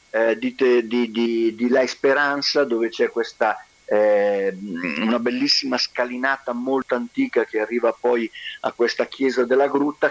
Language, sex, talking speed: Italian, male, 135 wpm